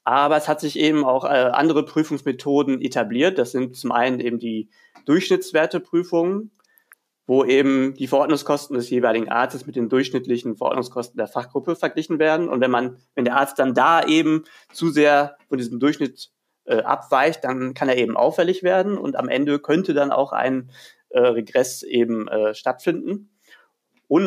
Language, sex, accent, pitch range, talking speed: German, male, German, 125-165 Hz, 165 wpm